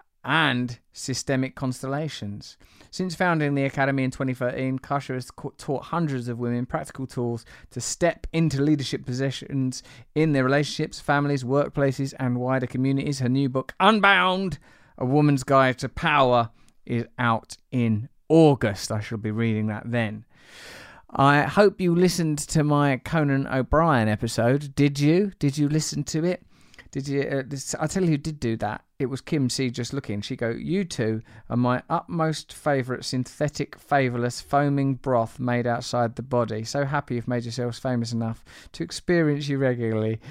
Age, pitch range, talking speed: 30-49, 120-145 Hz, 160 wpm